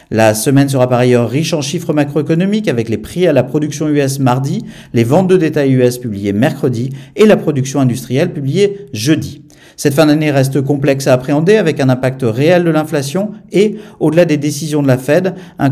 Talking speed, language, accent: 195 wpm, French, French